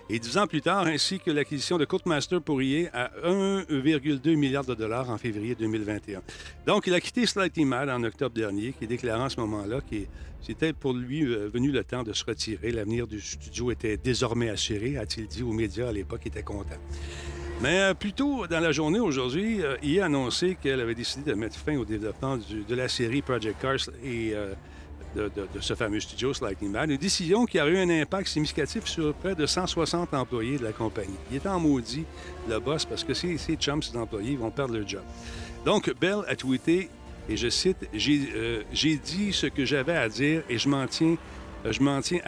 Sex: male